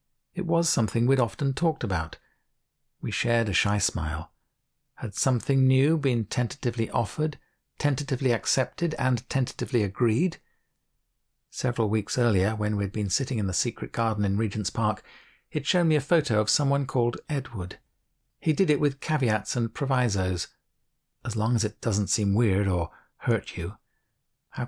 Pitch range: 105-140 Hz